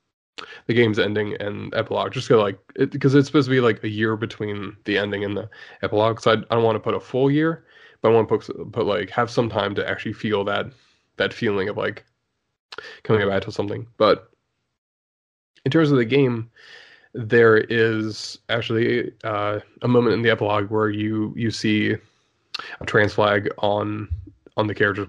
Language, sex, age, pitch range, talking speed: English, male, 20-39, 105-120 Hz, 195 wpm